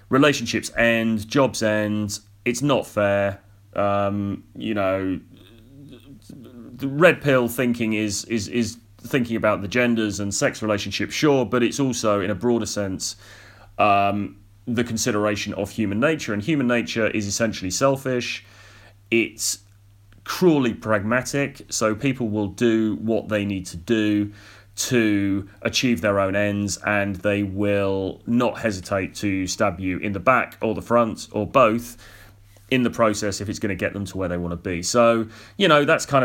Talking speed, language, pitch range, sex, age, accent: 160 wpm, English, 100-120 Hz, male, 30-49, British